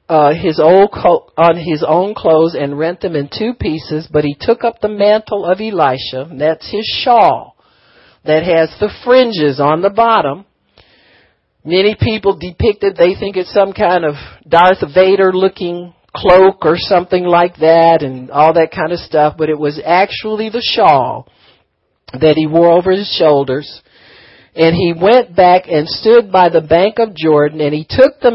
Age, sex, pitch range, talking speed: 50-69, male, 155-200 Hz, 180 wpm